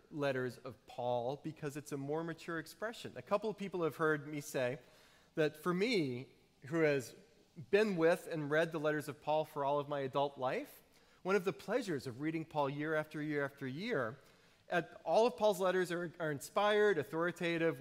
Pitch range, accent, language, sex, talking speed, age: 140-190 Hz, American, English, male, 190 wpm, 40-59